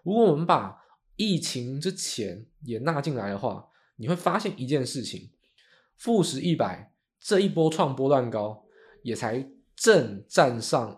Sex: male